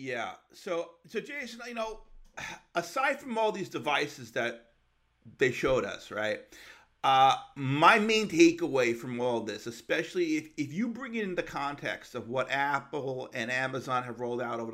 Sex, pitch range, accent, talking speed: male, 125-175 Hz, American, 165 wpm